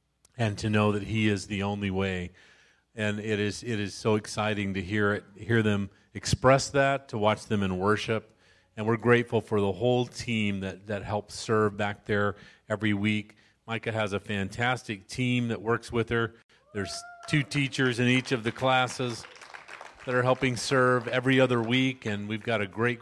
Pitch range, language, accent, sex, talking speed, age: 105-125 Hz, English, American, male, 190 wpm, 40-59